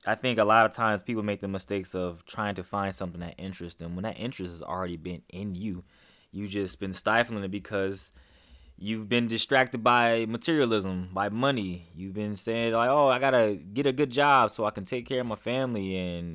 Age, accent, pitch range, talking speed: 20-39, American, 95-120 Hz, 215 wpm